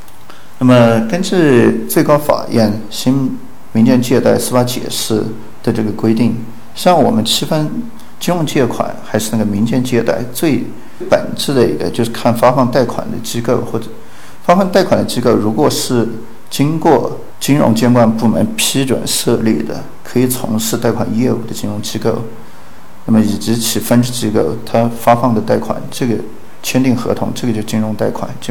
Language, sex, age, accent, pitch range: Chinese, male, 50-69, native, 110-130 Hz